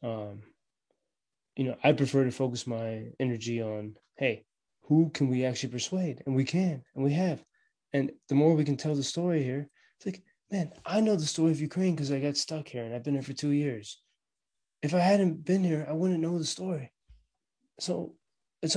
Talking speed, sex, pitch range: 205 wpm, male, 135-180 Hz